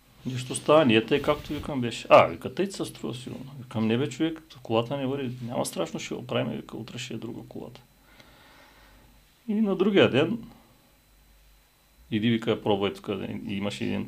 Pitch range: 115-160 Hz